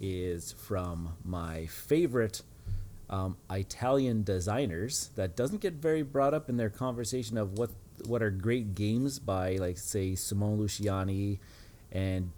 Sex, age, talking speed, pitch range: male, 30-49, 135 wpm, 95-115 Hz